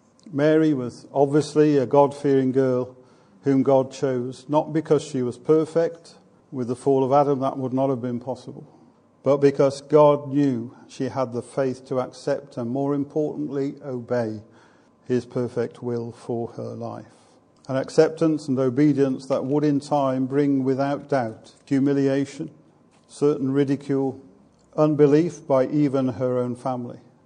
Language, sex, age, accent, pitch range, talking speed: English, male, 50-69, British, 125-145 Hz, 145 wpm